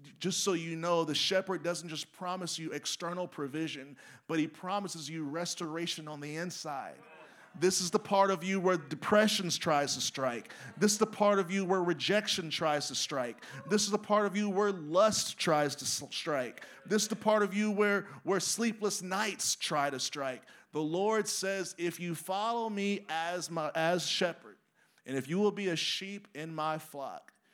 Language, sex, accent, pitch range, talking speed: English, male, American, 150-195 Hz, 190 wpm